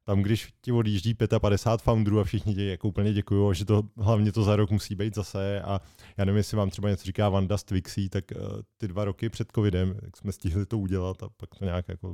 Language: Czech